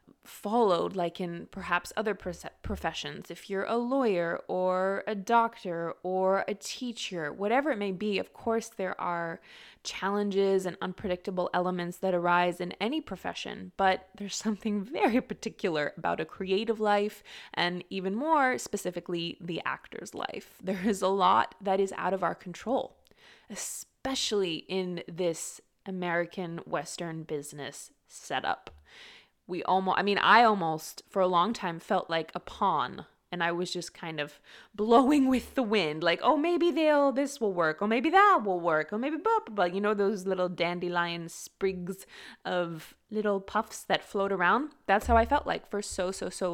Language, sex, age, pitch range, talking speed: English, female, 20-39, 175-220 Hz, 165 wpm